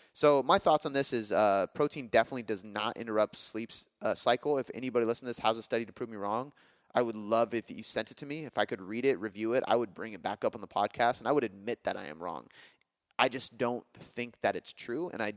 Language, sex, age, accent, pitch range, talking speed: English, male, 30-49, American, 110-130 Hz, 270 wpm